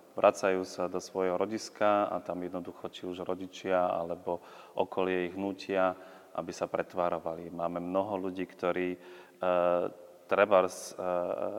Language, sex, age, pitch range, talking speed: Slovak, male, 30-49, 90-95 Hz, 125 wpm